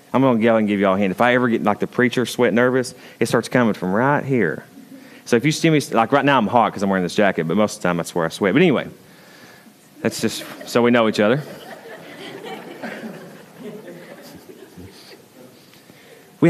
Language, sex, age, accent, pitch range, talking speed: English, male, 30-49, American, 100-135 Hz, 215 wpm